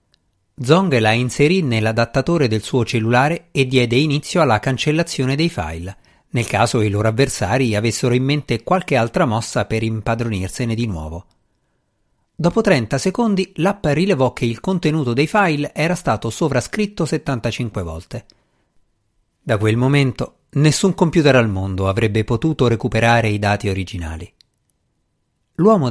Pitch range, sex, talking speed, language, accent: 110-155 Hz, male, 135 wpm, Italian, native